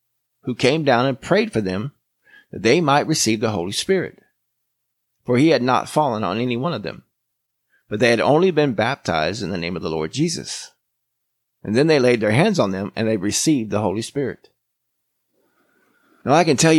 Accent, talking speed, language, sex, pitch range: American, 195 wpm, English, male, 105-140 Hz